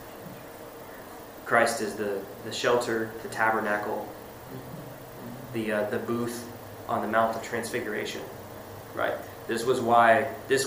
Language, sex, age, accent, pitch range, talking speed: English, male, 20-39, American, 115-130 Hz, 120 wpm